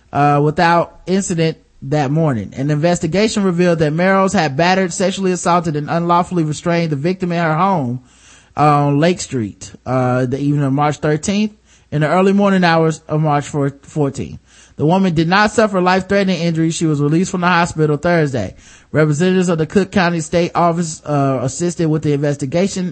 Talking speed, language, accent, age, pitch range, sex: 175 wpm, English, American, 20-39, 145-180 Hz, male